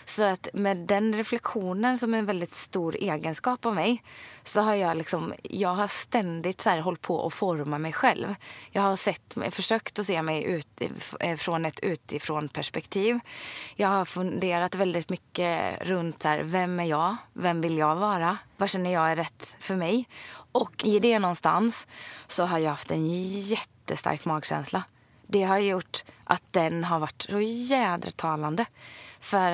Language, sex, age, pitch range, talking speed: English, female, 20-39, 155-205 Hz, 165 wpm